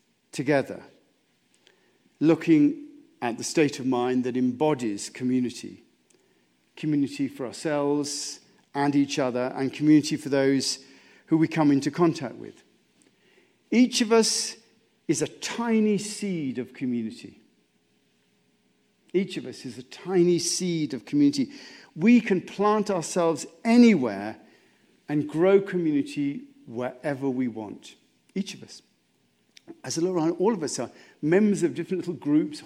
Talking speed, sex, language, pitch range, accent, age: 130 wpm, male, English, 135-205 Hz, British, 50-69